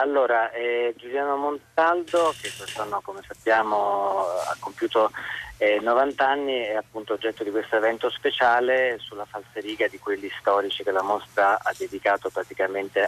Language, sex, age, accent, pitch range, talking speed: Italian, male, 30-49, native, 100-130 Hz, 145 wpm